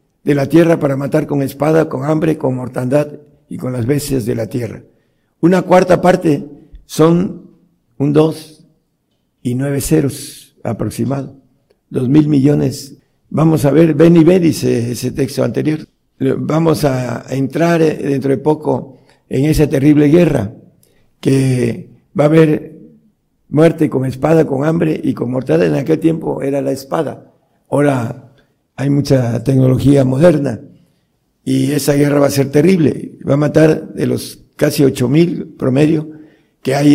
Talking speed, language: 150 wpm, Spanish